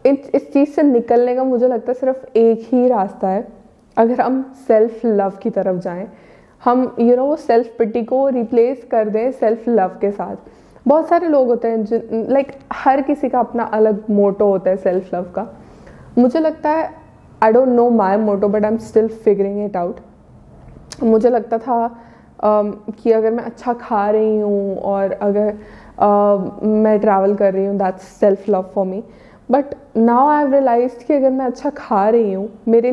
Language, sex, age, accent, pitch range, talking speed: Hindi, female, 20-39, native, 205-245 Hz, 185 wpm